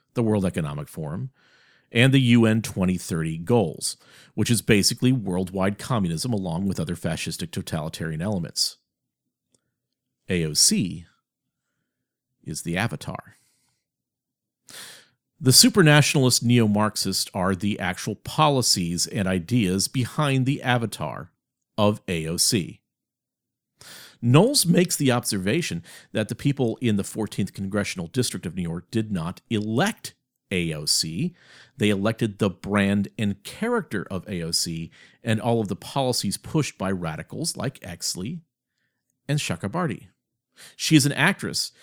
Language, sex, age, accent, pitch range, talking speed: English, male, 50-69, American, 95-130 Hz, 115 wpm